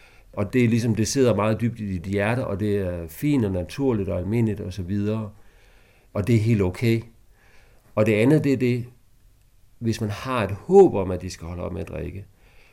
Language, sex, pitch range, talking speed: Danish, male, 100-120 Hz, 220 wpm